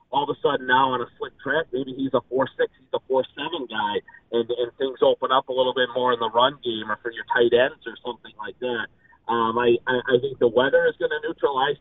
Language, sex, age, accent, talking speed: English, male, 40-59, American, 265 wpm